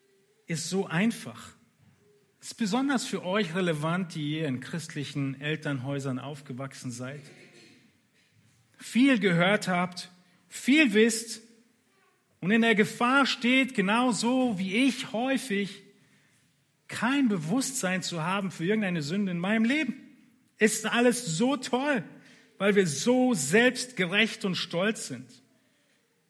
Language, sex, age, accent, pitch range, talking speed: German, male, 40-59, German, 150-220 Hz, 115 wpm